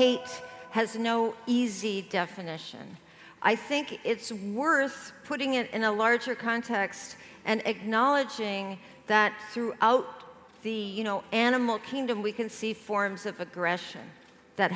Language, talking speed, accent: English, 125 wpm, American